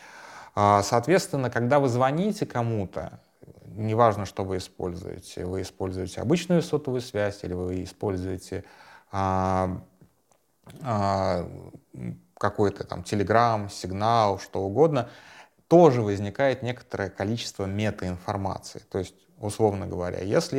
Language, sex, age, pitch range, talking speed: Russian, male, 30-49, 95-115 Hz, 95 wpm